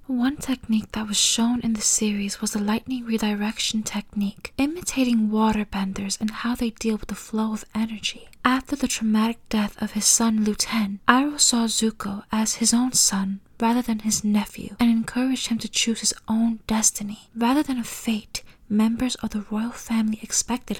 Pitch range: 215-240 Hz